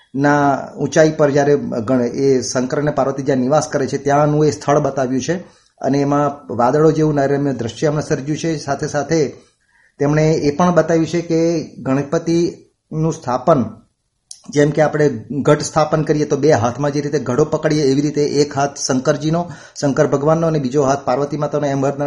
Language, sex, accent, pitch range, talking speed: Gujarati, male, native, 135-150 Hz, 165 wpm